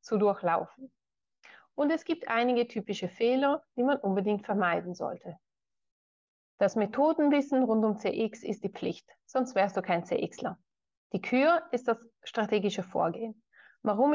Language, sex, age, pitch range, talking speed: German, female, 30-49, 200-265 Hz, 140 wpm